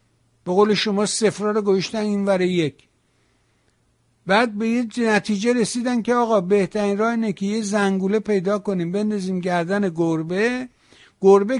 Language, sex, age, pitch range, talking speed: English, male, 60-79, 155-205 Hz, 145 wpm